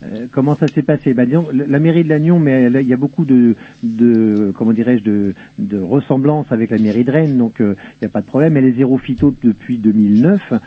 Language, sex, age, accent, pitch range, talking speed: French, male, 50-69, French, 110-135 Hz, 235 wpm